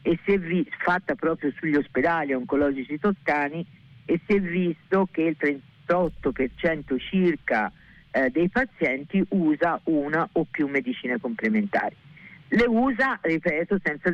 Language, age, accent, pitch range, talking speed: Italian, 50-69, native, 140-190 Hz, 130 wpm